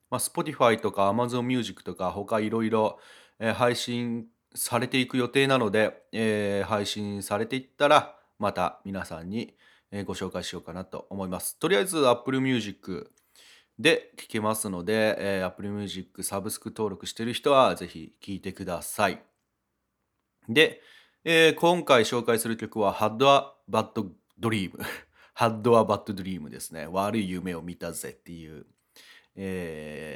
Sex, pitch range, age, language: male, 100-125 Hz, 30-49, Japanese